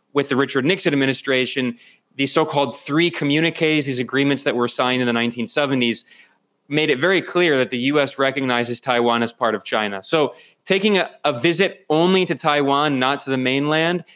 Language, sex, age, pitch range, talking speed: English, male, 20-39, 130-155 Hz, 180 wpm